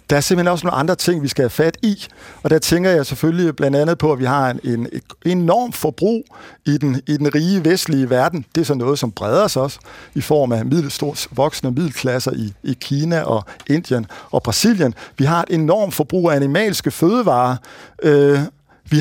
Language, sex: Danish, male